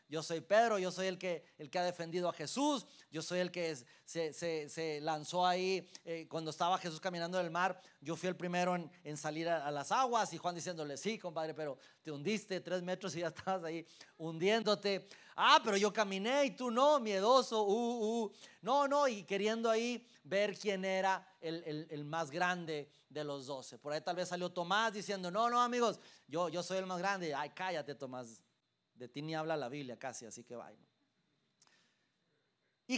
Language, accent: Spanish, Mexican